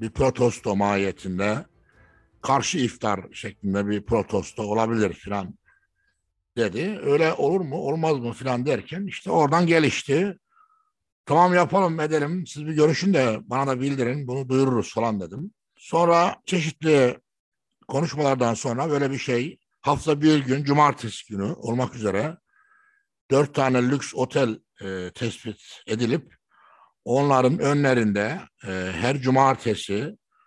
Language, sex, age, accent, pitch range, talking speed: Turkish, male, 60-79, native, 110-165 Hz, 115 wpm